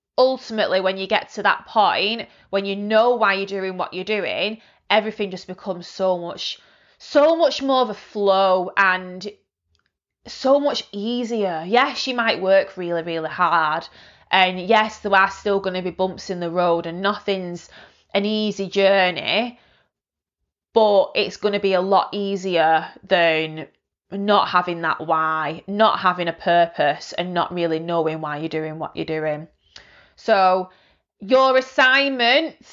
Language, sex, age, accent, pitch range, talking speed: English, female, 20-39, British, 185-235 Hz, 155 wpm